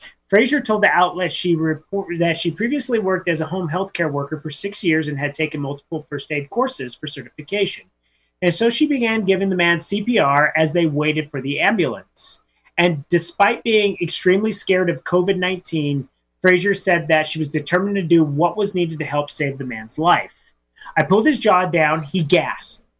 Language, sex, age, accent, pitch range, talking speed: English, male, 30-49, American, 155-195 Hz, 190 wpm